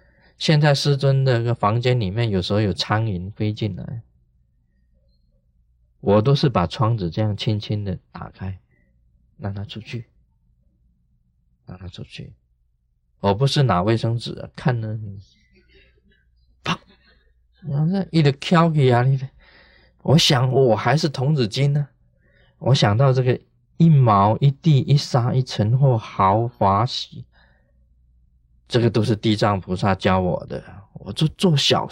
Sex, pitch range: male, 95-145 Hz